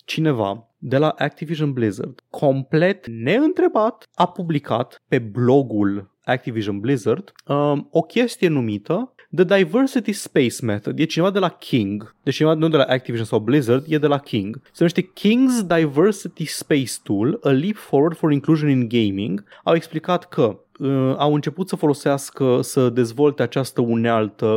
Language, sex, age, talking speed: Romanian, male, 30-49, 150 wpm